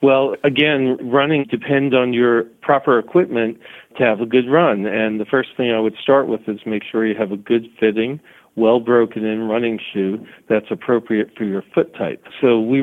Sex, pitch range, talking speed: male, 110-130 Hz, 190 wpm